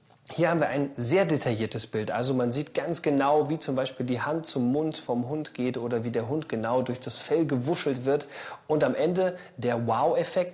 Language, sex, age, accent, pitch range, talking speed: German, male, 30-49, German, 130-185 Hz, 210 wpm